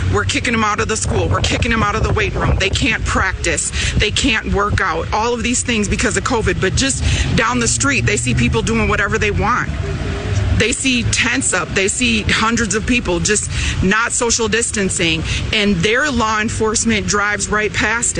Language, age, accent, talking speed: English, 30-49, American, 200 wpm